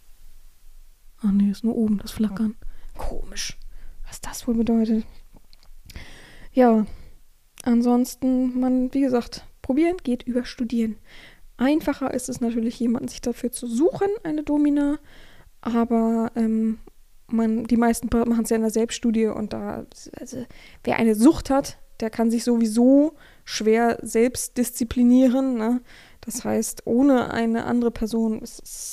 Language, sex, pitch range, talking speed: German, female, 230-280 Hz, 135 wpm